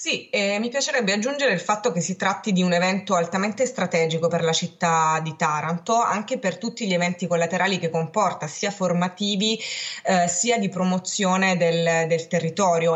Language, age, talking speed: Italian, 20-39, 170 wpm